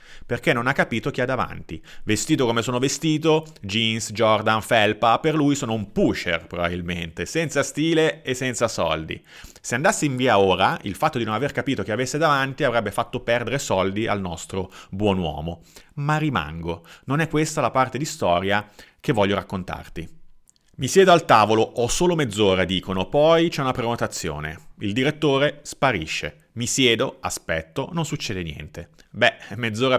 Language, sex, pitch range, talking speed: Italian, male, 95-150 Hz, 165 wpm